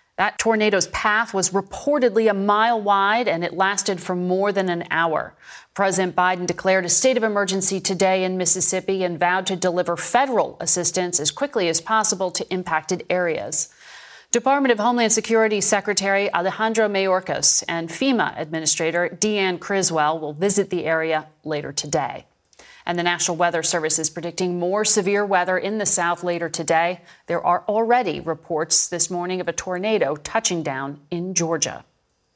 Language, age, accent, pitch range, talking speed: English, 40-59, American, 175-220 Hz, 160 wpm